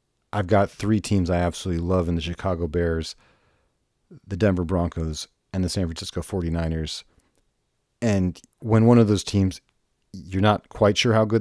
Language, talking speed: English, 165 wpm